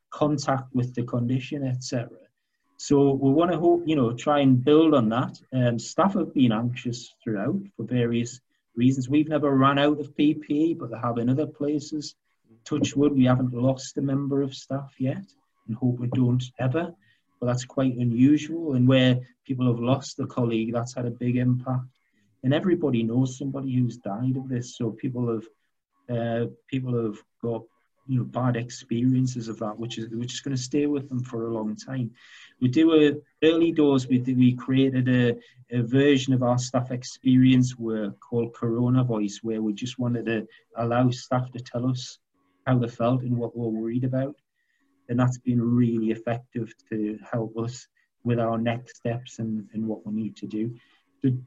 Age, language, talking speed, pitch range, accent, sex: 40-59, English, 190 wpm, 115-135 Hz, British, male